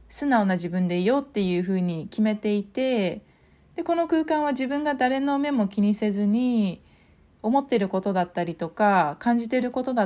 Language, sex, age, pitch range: Japanese, female, 20-39, 185-275 Hz